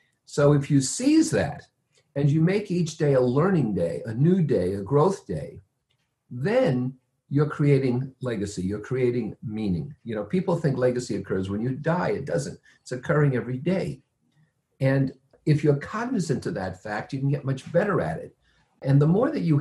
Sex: male